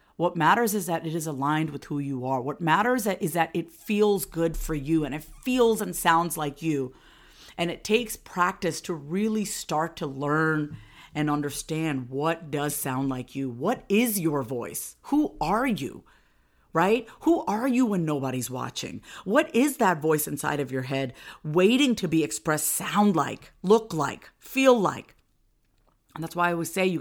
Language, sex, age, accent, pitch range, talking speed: English, female, 50-69, American, 145-210 Hz, 180 wpm